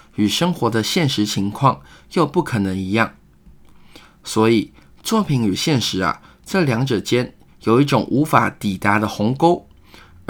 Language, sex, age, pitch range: Chinese, male, 20-39, 105-145 Hz